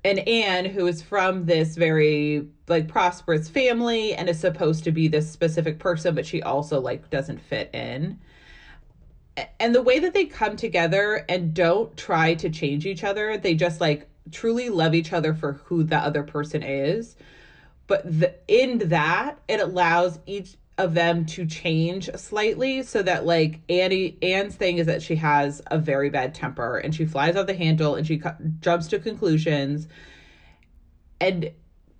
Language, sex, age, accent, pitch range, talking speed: English, female, 30-49, American, 150-180 Hz, 170 wpm